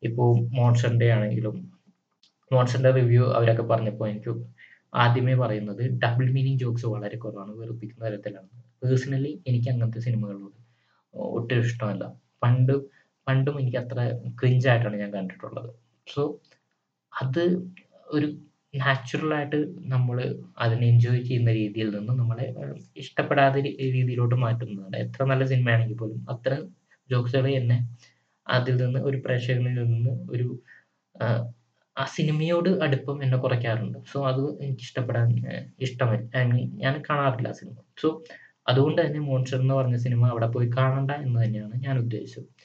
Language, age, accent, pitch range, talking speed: Malayalam, 20-39, native, 115-135 Hz, 115 wpm